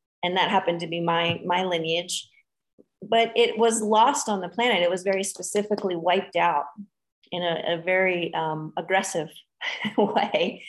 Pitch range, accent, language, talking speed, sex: 170-200 Hz, American, English, 155 wpm, female